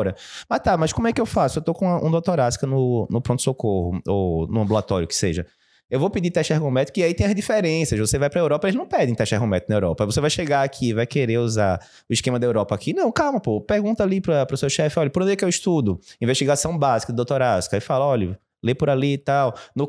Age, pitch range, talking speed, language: 20-39, 125-175 Hz, 250 wpm, Portuguese